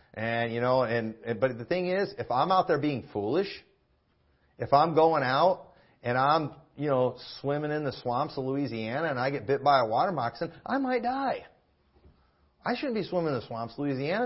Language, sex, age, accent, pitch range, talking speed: English, male, 40-59, American, 140-215 Hz, 200 wpm